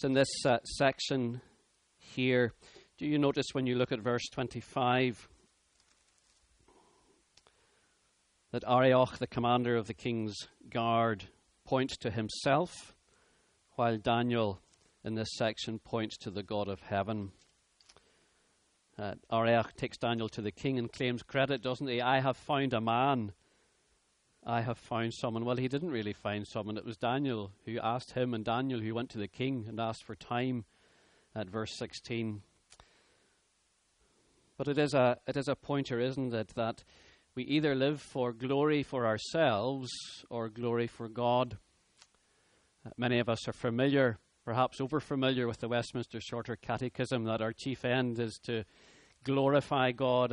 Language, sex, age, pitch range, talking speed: English, male, 40-59, 110-130 Hz, 150 wpm